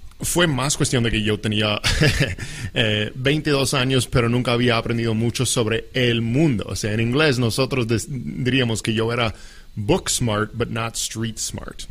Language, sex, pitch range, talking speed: English, male, 110-130 Hz, 165 wpm